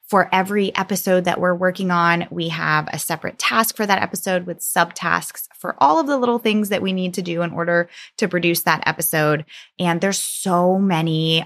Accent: American